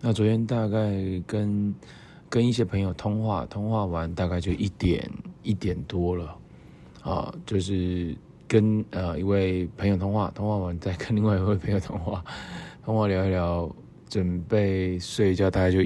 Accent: native